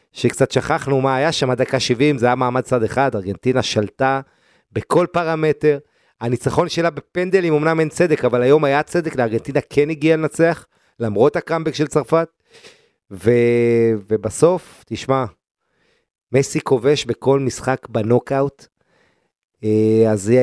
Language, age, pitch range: Hebrew, 30-49, 125-165 Hz